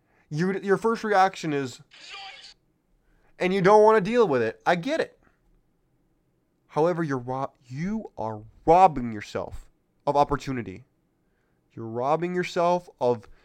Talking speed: 130 wpm